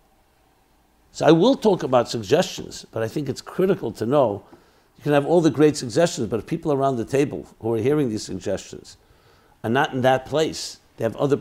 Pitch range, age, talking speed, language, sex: 115-160 Hz, 60-79, 205 wpm, English, male